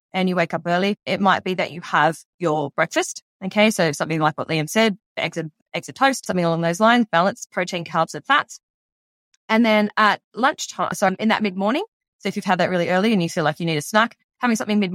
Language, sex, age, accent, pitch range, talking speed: English, female, 20-39, Australian, 170-220 Hz, 235 wpm